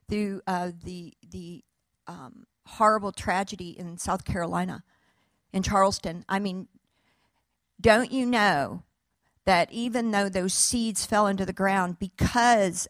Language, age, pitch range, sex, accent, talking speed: English, 50-69, 190-240 Hz, female, American, 125 wpm